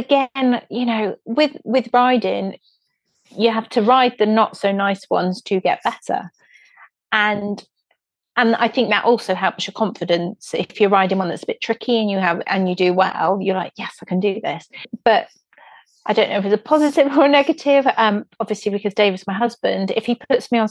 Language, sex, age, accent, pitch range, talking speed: English, female, 30-49, British, 195-255 Hz, 210 wpm